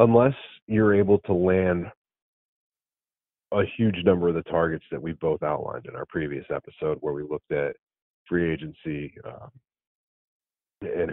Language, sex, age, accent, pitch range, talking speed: English, male, 40-59, American, 90-110 Hz, 145 wpm